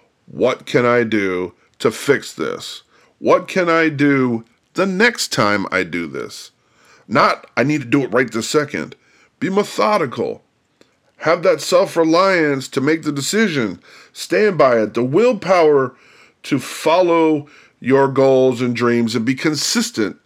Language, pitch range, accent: English, 115-160 Hz, American